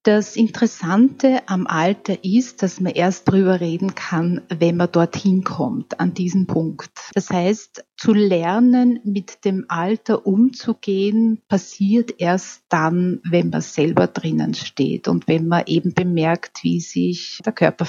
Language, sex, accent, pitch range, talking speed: German, female, Austrian, 180-215 Hz, 145 wpm